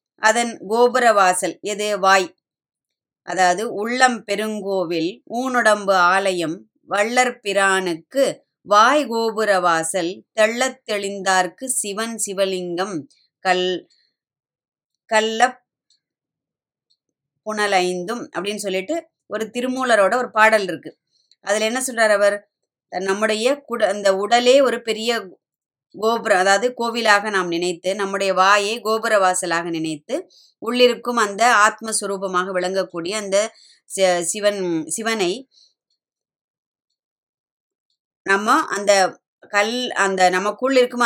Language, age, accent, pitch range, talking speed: Tamil, 20-39, native, 190-230 Hz, 85 wpm